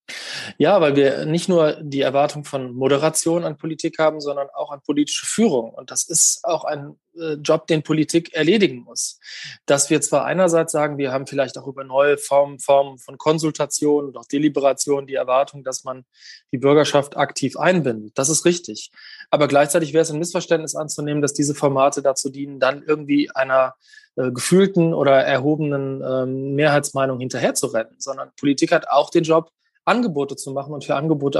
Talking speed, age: 170 wpm, 20-39